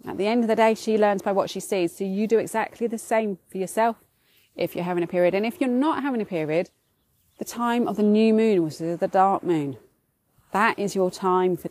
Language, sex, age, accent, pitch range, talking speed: English, female, 30-49, British, 170-230 Hz, 240 wpm